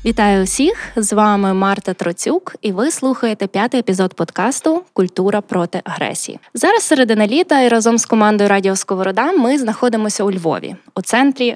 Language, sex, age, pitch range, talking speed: Ukrainian, female, 20-39, 195-250 Hz, 155 wpm